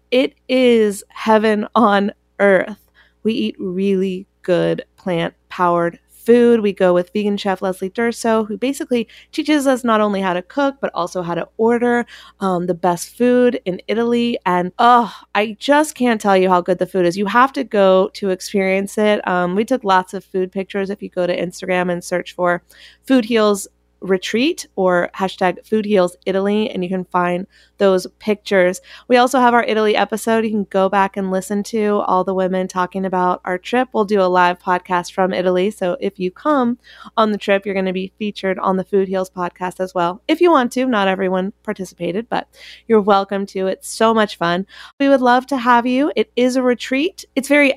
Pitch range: 185-230 Hz